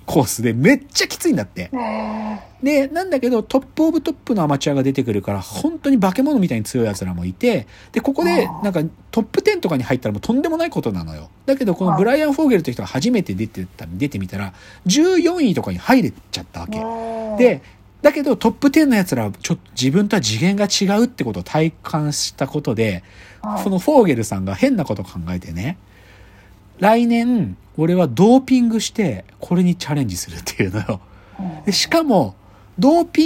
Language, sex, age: Japanese, male, 40-59